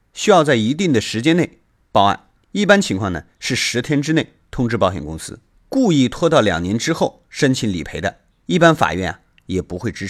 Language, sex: Chinese, male